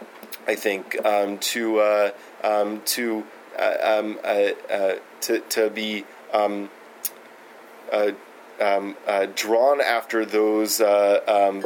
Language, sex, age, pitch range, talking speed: English, male, 20-39, 105-120 Hz, 120 wpm